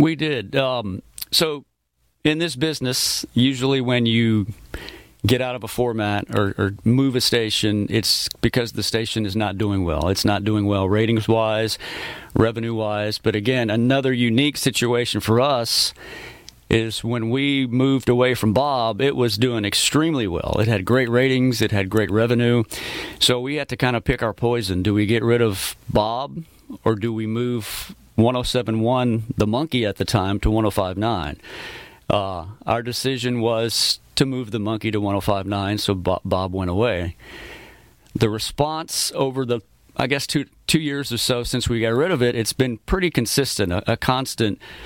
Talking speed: 170 wpm